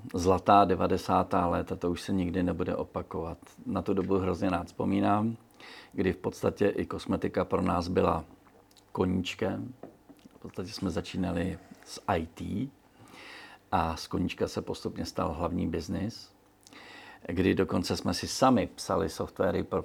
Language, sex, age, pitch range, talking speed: Czech, male, 50-69, 90-100 Hz, 135 wpm